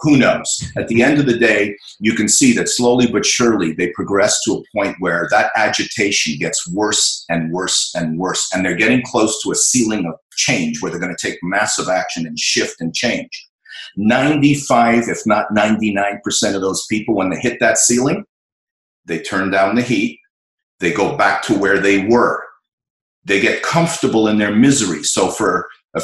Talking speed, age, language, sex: 190 wpm, 50-69, English, male